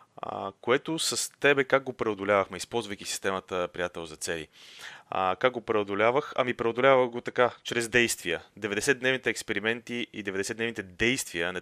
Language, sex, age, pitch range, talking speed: Bulgarian, male, 30-49, 90-120 Hz, 140 wpm